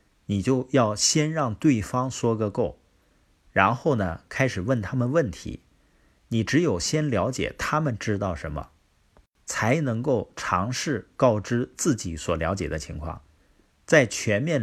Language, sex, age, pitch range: Chinese, male, 50-69, 85-135 Hz